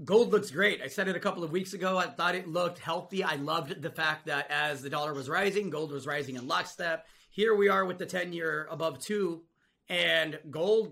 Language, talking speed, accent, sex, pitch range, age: English, 230 wpm, American, male, 150-180 Hz, 30-49